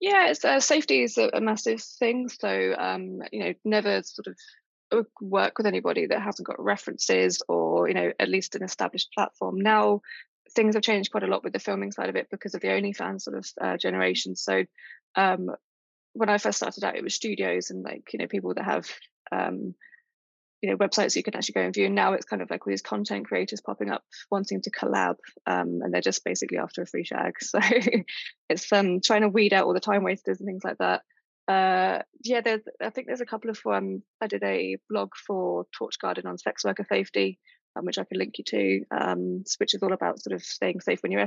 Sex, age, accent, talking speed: female, 20-39, British, 225 wpm